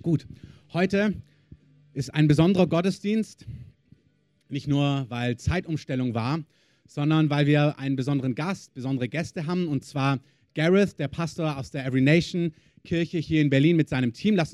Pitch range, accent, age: 130-160 Hz, German, 30-49